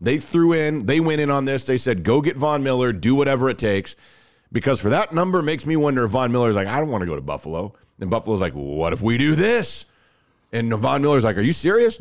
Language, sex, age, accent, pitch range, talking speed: English, male, 40-59, American, 110-150 Hz, 260 wpm